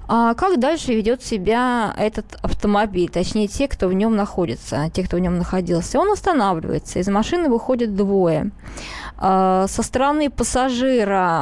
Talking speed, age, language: 135 wpm, 20-39, Russian